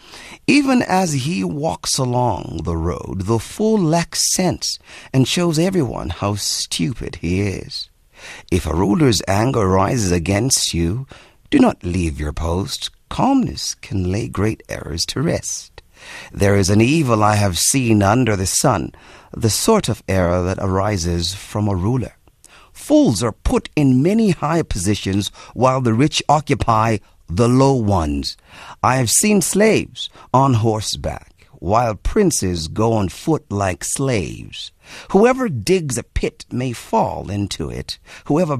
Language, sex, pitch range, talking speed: English, male, 95-140 Hz, 145 wpm